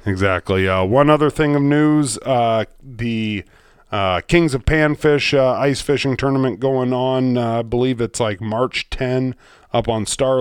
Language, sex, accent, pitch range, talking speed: English, male, American, 105-130 Hz, 165 wpm